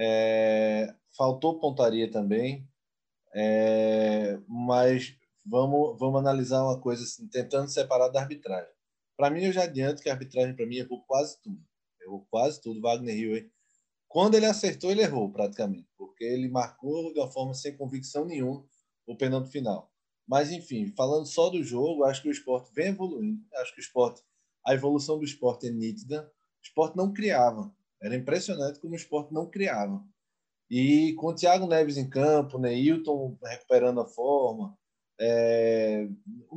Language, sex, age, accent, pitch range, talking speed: Portuguese, male, 20-39, Brazilian, 125-170 Hz, 160 wpm